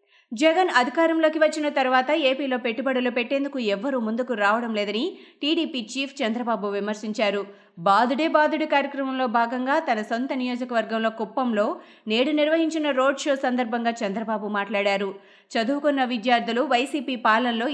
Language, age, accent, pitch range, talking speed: Telugu, 20-39, native, 225-285 Hz, 115 wpm